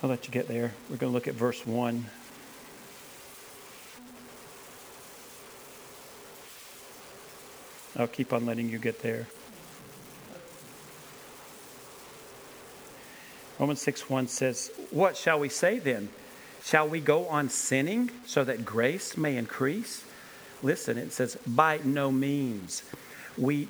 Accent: American